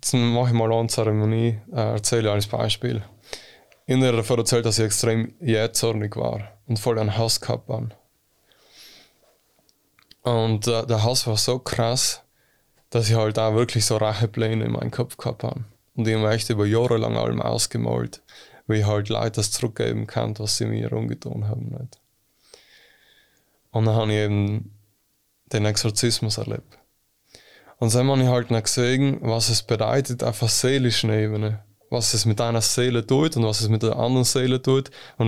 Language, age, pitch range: German, 20-39, 110-125 Hz